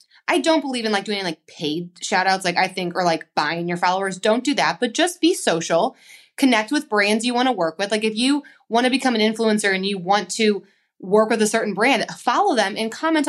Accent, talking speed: American, 240 wpm